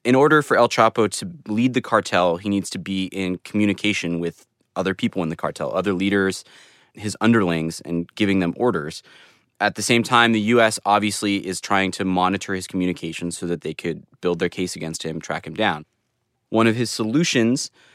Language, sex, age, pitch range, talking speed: English, male, 20-39, 90-110 Hz, 195 wpm